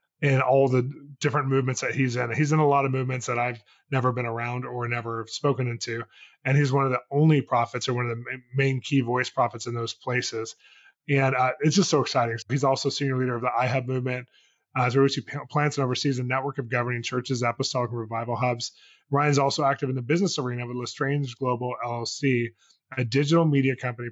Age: 20-39